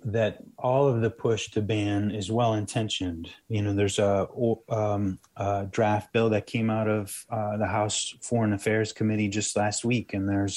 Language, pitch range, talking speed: English, 105-115 Hz, 185 wpm